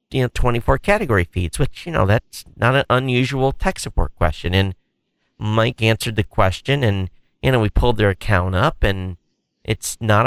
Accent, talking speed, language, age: American, 180 wpm, English, 40-59